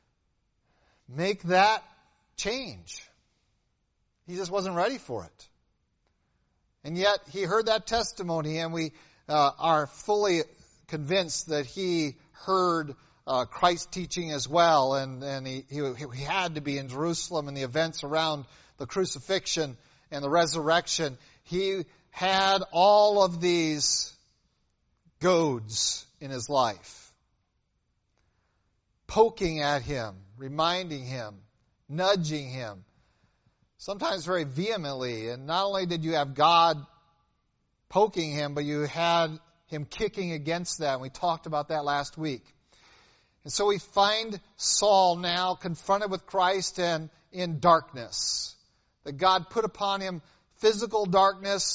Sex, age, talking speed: male, 50-69, 125 wpm